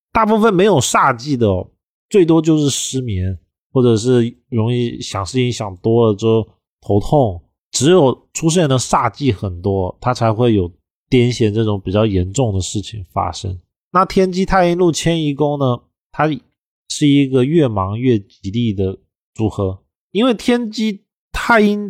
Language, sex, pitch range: Chinese, male, 105-145 Hz